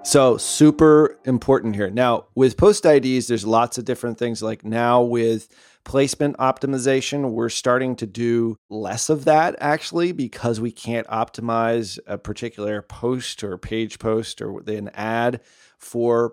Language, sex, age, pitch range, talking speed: English, male, 30-49, 110-130 Hz, 145 wpm